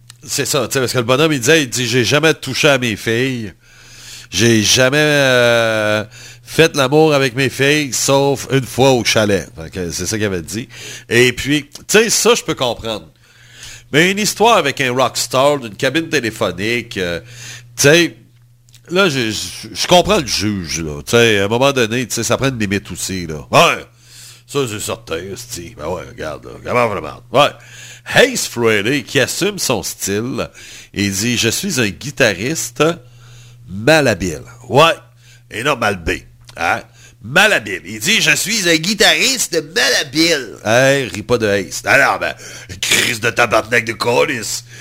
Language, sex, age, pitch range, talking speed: French, male, 60-79, 115-150 Hz, 170 wpm